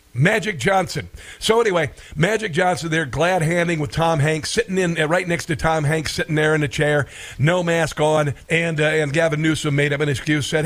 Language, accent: English, American